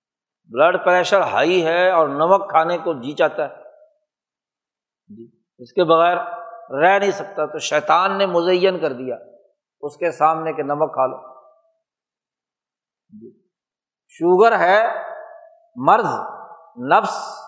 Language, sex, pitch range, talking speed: Urdu, male, 160-235 Hz, 120 wpm